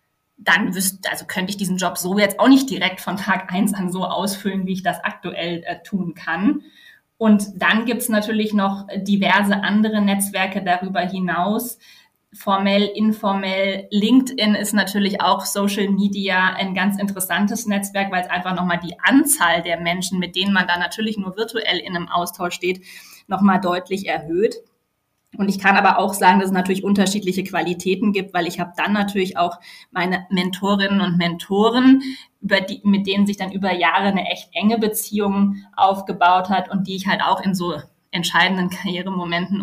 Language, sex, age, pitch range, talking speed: German, female, 20-39, 180-200 Hz, 175 wpm